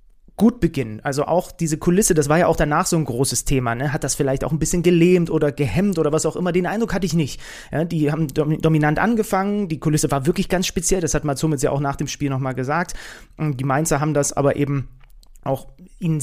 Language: German